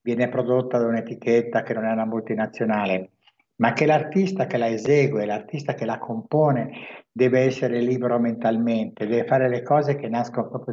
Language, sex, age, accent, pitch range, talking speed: Italian, male, 60-79, native, 115-135 Hz, 170 wpm